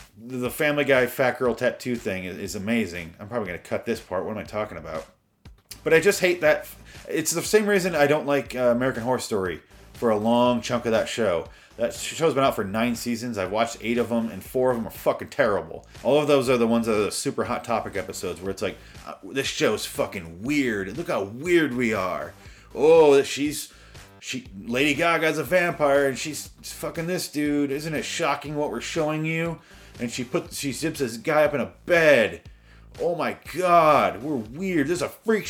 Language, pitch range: English, 115-160 Hz